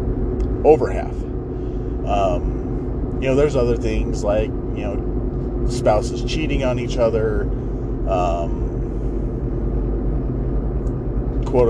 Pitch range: 115-125 Hz